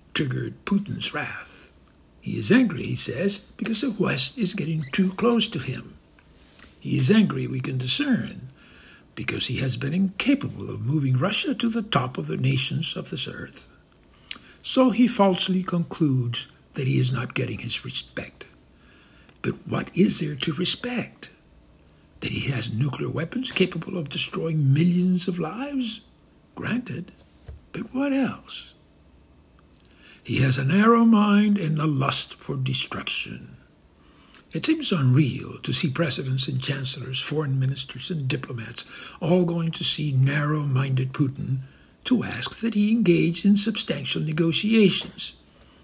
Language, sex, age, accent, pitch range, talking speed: English, male, 60-79, American, 130-205 Hz, 140 wpm